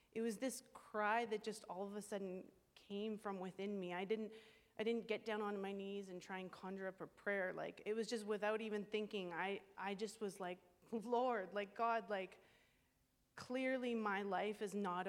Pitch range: 185-225 Hz